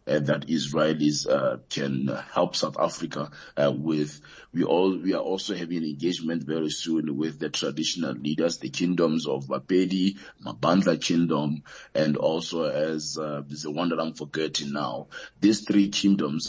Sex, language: male, English